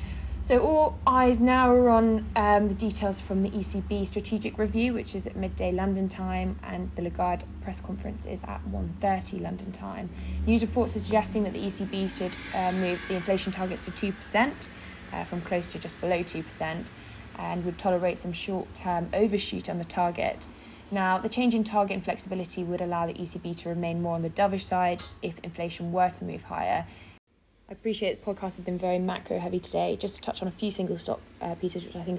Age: 20-39